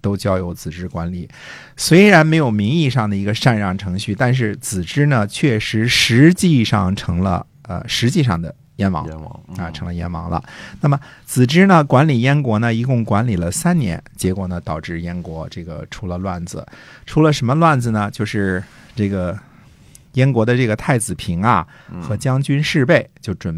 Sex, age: male, 50-69